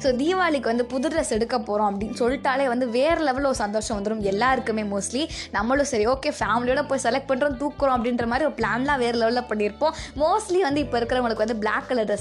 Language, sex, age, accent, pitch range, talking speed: Tamil, female, 20-39, native, 215-270 Hz, 195 wpm